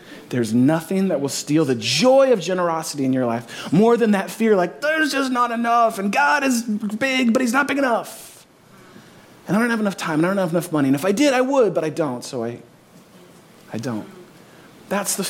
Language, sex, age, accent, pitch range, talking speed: English, male, 30-49, American, 140-210 Hz, 225 wpm